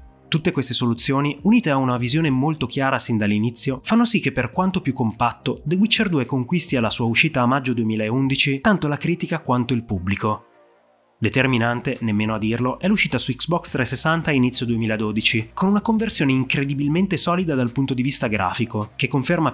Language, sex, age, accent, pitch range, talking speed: Italian, male, 30-49, native, 120-160 Hz, 180 wpm